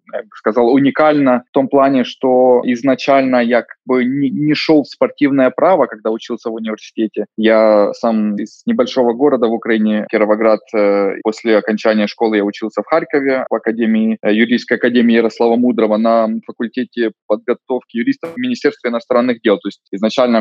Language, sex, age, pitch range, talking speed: Russian, male, 20-39, 115-145 Hz, 155 wpm